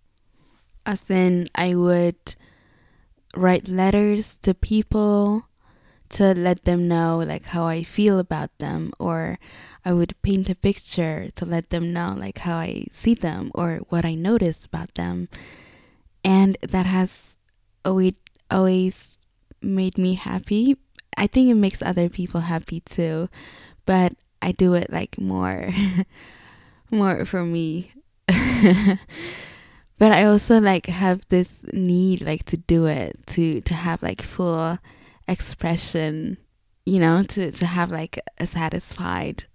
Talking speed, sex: 135 wpm, female